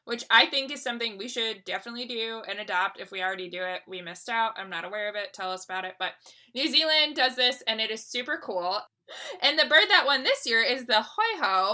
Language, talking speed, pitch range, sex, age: English, 245 wpm, 205-270 Hz, female, 20-39